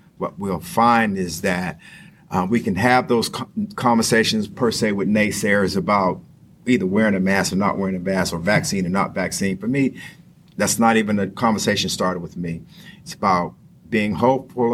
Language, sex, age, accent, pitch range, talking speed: English, male, 50-69, American, 95-130 Hz, 180 wpm